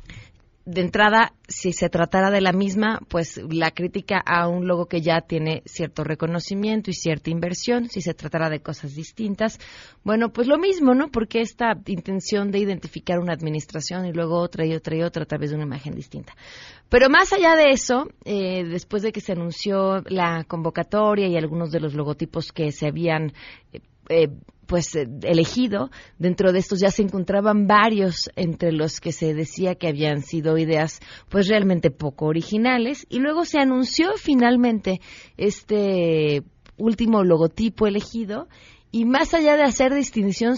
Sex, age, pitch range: female, 30-49, 165-225 Hz